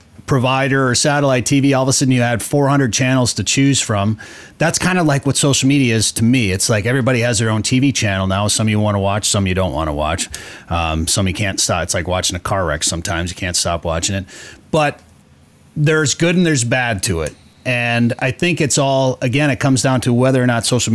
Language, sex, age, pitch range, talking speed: English, male, 30-49, 95-130 Hz, 240 wpm